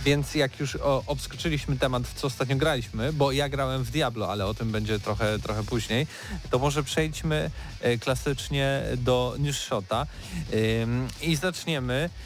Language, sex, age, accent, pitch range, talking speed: Polish, male, 40-59, native, 115-145 Hz, 150 wpm